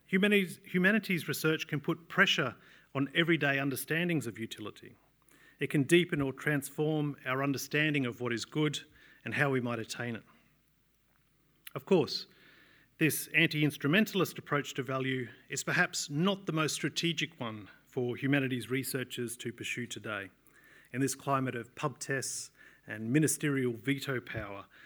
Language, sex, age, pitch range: English, male, 40-59, 125-155 Hz